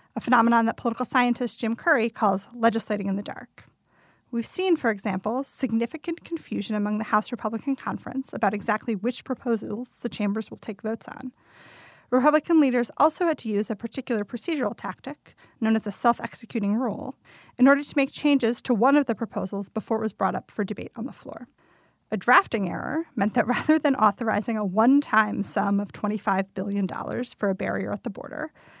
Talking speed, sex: 185 wpm, female